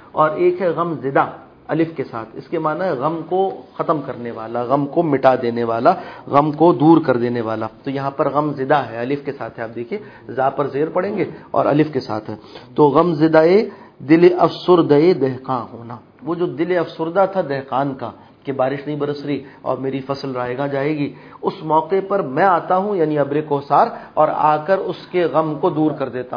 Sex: male